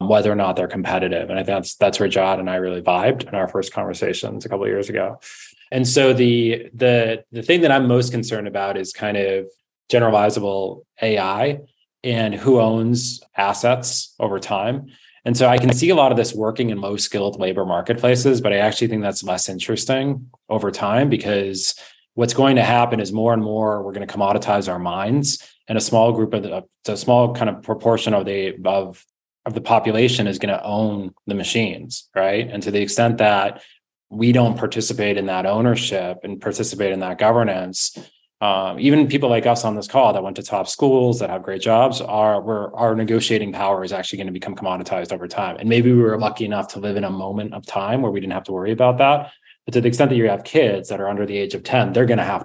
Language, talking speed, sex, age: English, 225 wpm, male, 20-39